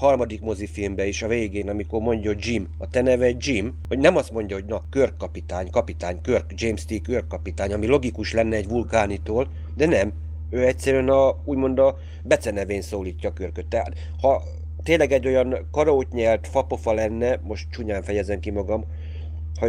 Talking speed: 170 wpm